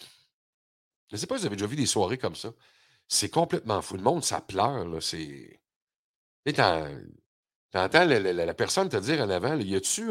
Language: French